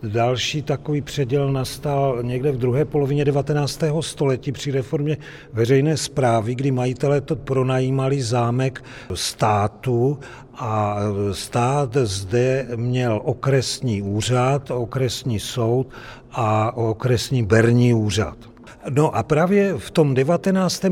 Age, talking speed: 50-69, 110 wpm